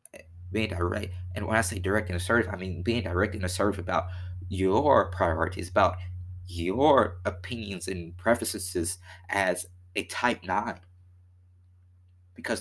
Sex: male